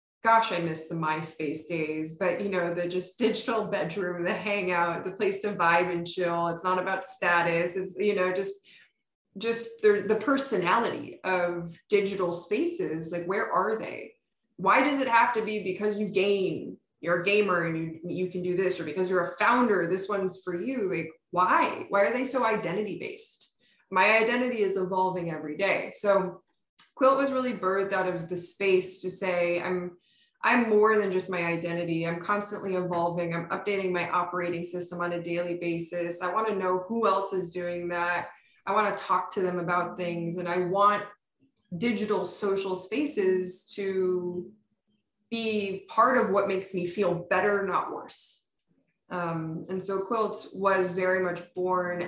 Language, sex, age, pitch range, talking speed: English, female, 20-39, 175-205 Hz, 175 wpm